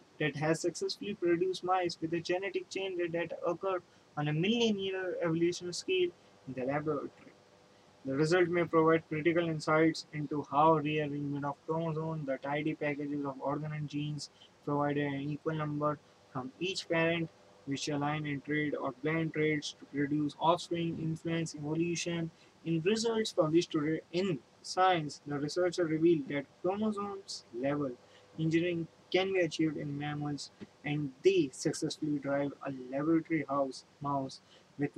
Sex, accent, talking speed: male, Indian, 145 wpm